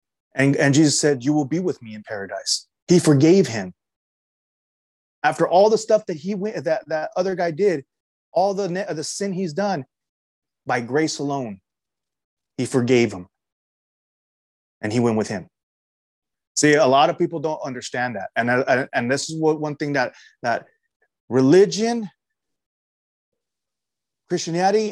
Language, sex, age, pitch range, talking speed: English, male, 30-49, 110-155 Hz, 145 wpm